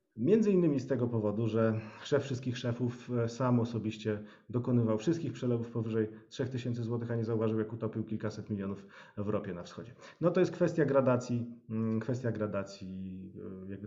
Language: Polish